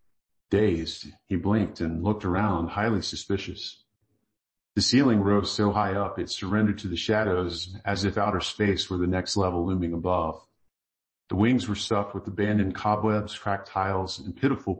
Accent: American